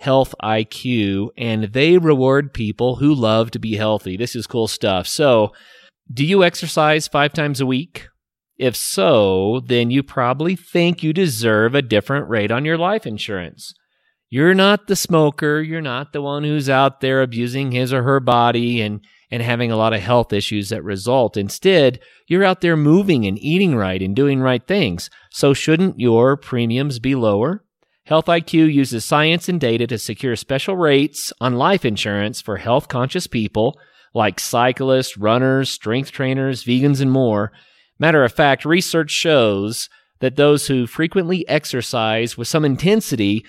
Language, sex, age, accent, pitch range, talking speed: English, male, 30-49, American, 115-155 Hz, 165 wpm